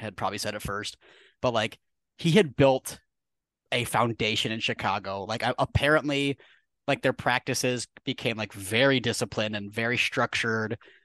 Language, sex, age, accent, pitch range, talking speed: English, male, 30-49, American, 110-135 Hz, 140 wpm